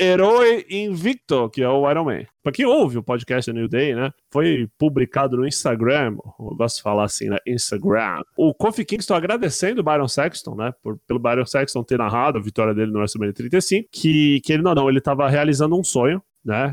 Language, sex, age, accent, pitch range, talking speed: Portuguese, male, 20-39, Brazilian, 125-155 Hz, 210 wpm